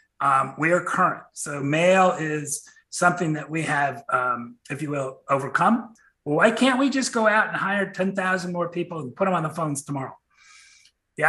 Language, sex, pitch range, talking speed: English, male, 145-185 Hz, 190 wpm